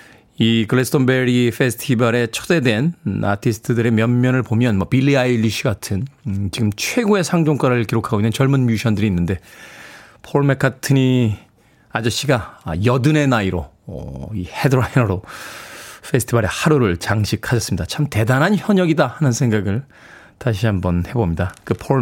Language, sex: Korean, male